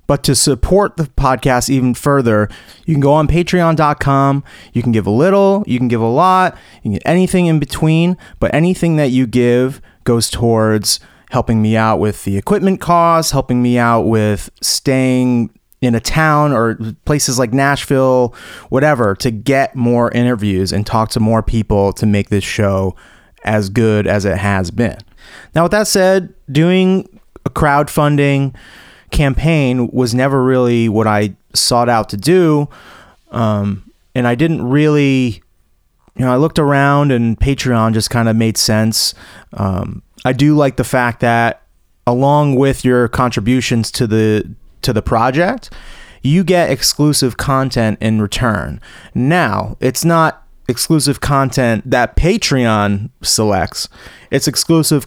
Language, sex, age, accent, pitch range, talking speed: English, male, 30-49, American, 110-145 Hz, 155 wpm